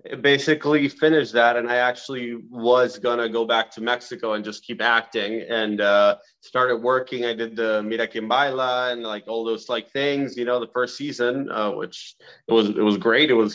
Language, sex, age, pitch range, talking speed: English, male, 30-49, 115-145 Hz, 205 wpm